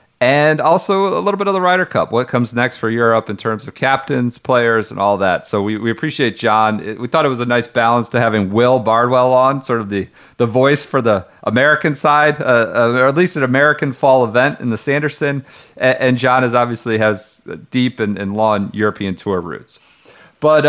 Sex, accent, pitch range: male, American, 120-165 Hz